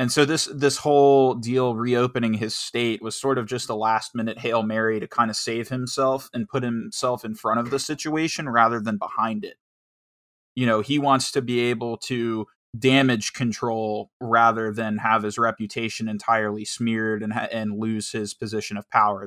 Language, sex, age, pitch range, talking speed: English, male, 20-39, 110-130 Hz, 185 wpm